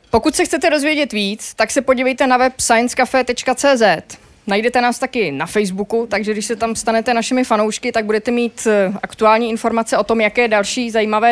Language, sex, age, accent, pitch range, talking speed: Czech, female, 20-39, native, 205-250 Hz, 175 wpm